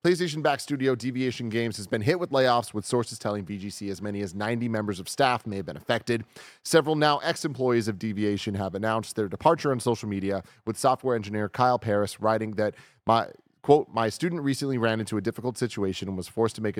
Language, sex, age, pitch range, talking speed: English, male, 30-49, 100-130 Hz, 210 wpm